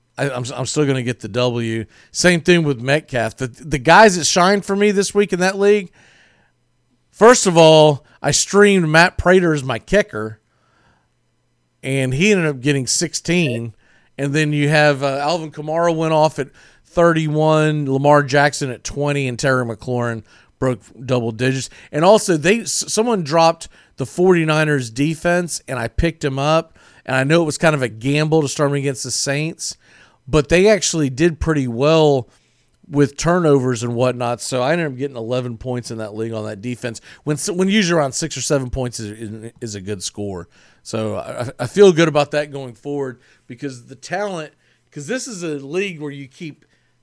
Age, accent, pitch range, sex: 40-59, American, 125-170 Hz, male